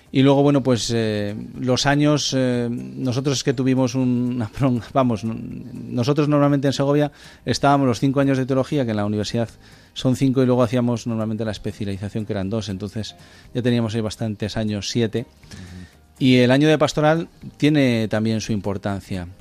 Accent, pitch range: Spanish, 110-130 Hz